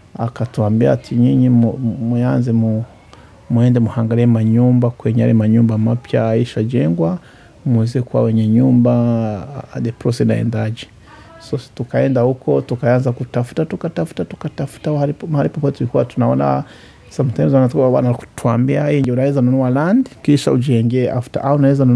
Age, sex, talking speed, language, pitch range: 30-49, male, 120 wpm, Swahili, 115-140 Hz